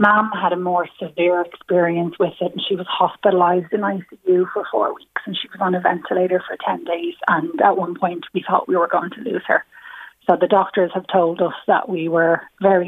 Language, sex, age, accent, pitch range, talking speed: English, female, 30-49, Irish, 170-195 Hz, 225 wpm